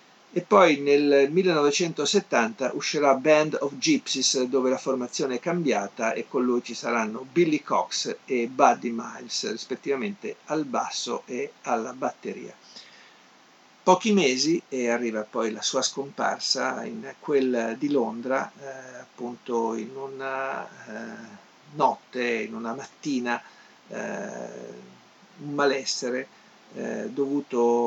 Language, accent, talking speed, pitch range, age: Italian, native, 120 wpm, 120-150 Hz, 50-69